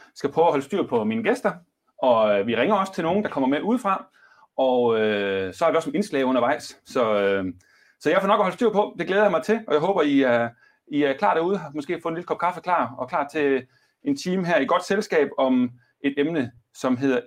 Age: 30-49